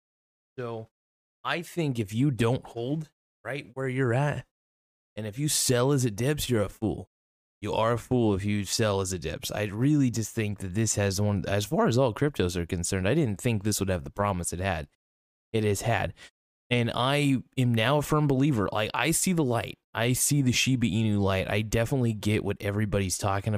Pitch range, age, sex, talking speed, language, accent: 95-125 Hz, 20-39, male, 210 wpm, English, American